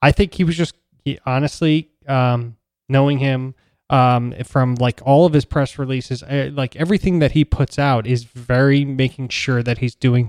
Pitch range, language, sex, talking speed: 120-140 Hz, English, male, 185 wpm